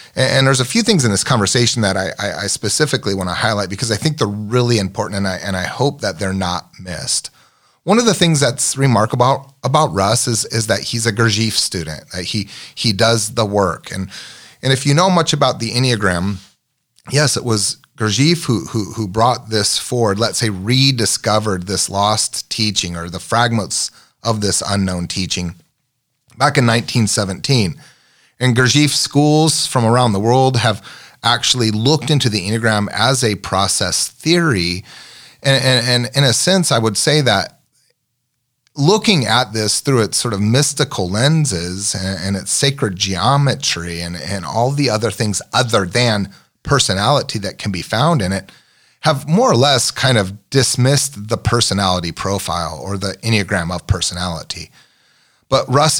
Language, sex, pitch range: English, male, 100-130 Hz